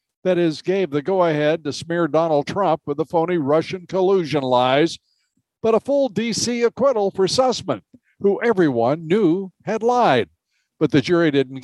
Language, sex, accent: English, male, American